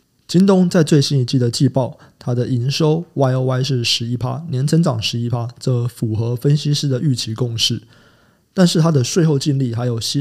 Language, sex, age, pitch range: Chinese, male, 20-39, 120-150 Hz